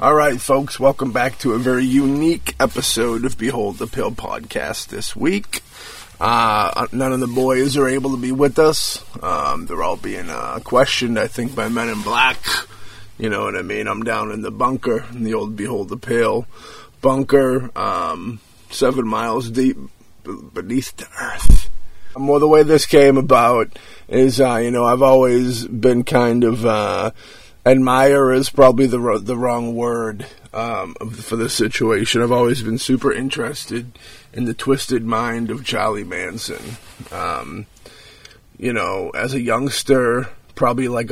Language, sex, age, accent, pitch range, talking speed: English, male, 20-39, American, 115-130 Hz, 165 wpm